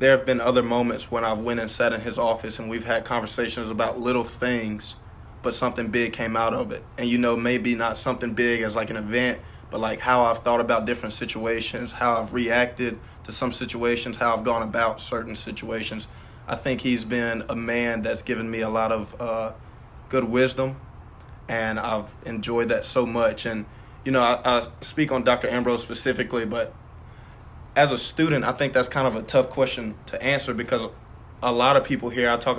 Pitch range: 115-125 Hz